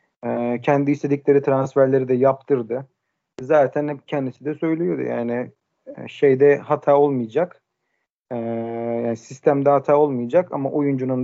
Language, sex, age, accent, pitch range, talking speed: Turkish, male, 40-59, native, 125-140 Hz, 105 wpm